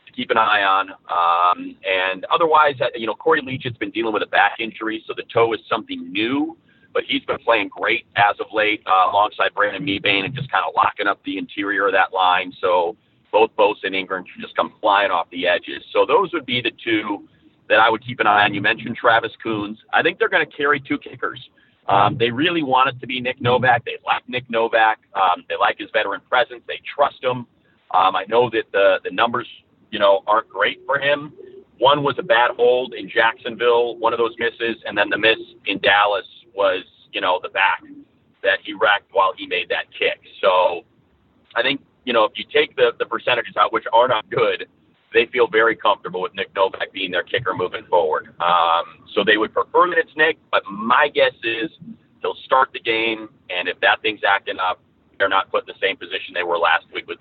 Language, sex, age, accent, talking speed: English, male, 40-59, American, 220 wpm